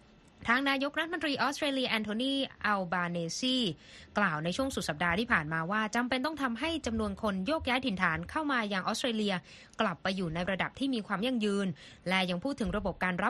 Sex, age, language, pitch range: female, 20-39, Thai, 185-245 Hz